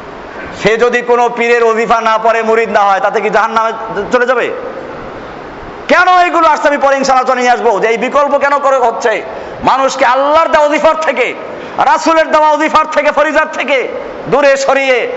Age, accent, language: 50-69, native, Bengali